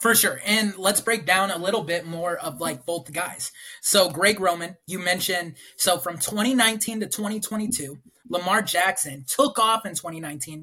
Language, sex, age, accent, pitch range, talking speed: English, male, 20-39, American, 175-230 Hz, 170 wpm